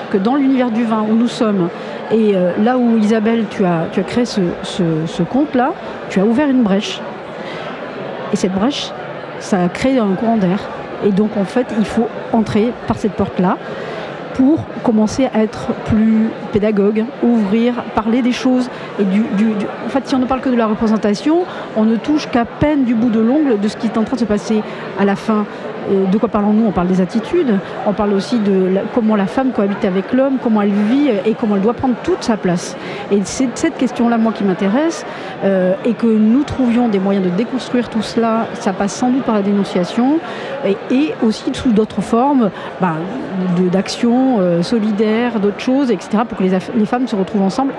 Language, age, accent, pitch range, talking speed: French, 40-59, French, 200-240 Hz, 210 wpm